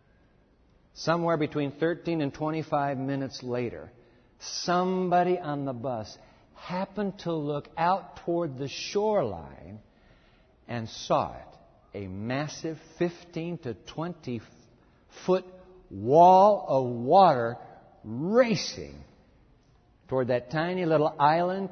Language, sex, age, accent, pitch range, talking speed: English, male, 60-79, American, 135-195 Hz, 100 wpm